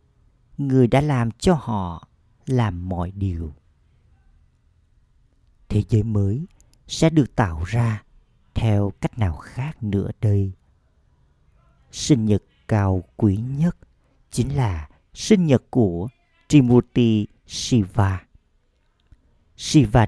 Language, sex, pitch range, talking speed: Vietnamese, male, 95-125 Hz, 100 wpm